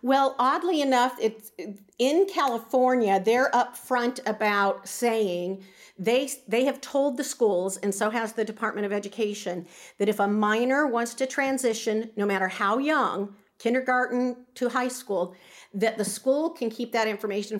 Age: 50-69